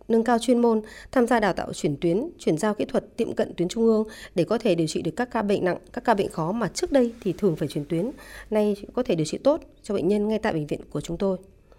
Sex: female